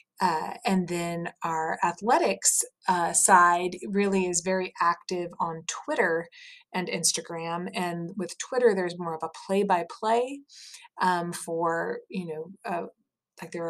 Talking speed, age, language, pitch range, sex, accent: 140 wpm, 30-49, English, 170-205 Hz, female, American